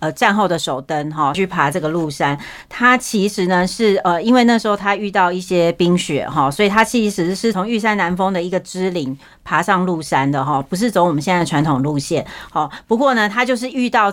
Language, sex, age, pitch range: Chinese, female, 40-59, 175-220 Hz